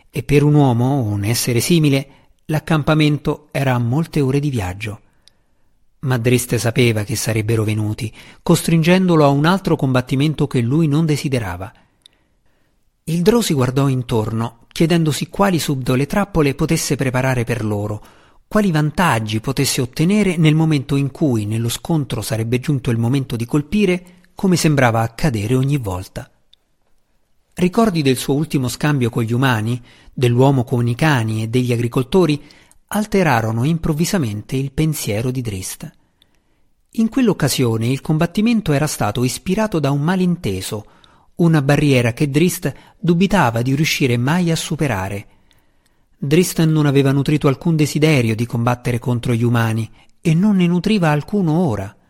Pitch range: 120-160 Hz